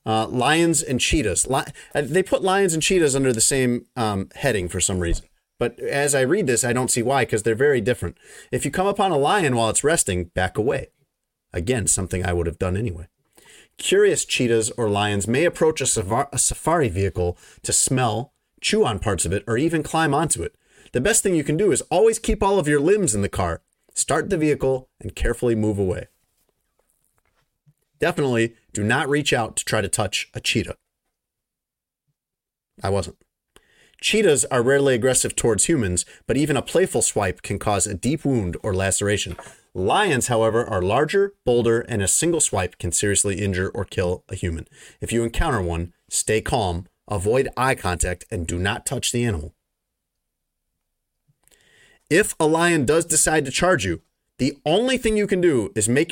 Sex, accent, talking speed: male, American, 185 wpm